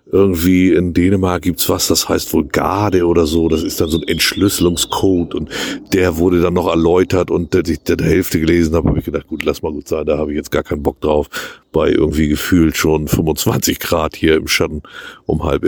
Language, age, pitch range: German, 50-69, 85-105 Hz